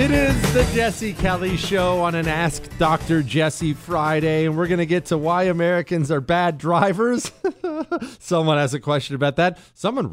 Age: 40-59